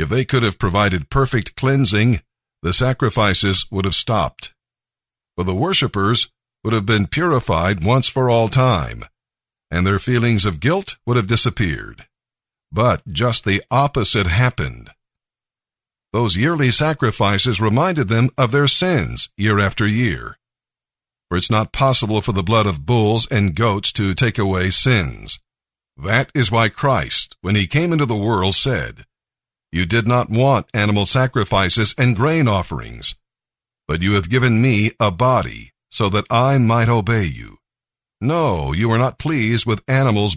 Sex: male